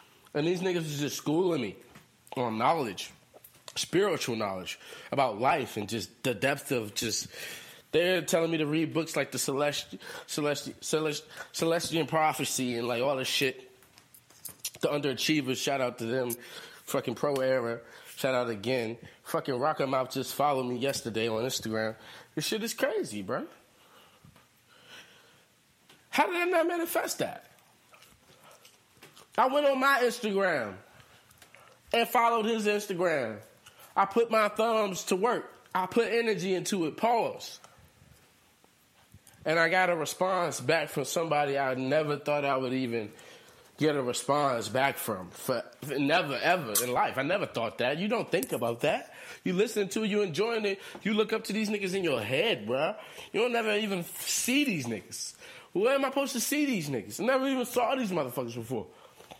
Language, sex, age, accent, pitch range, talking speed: English, male, 20-39, American, 130-210 Hz, 165 wpm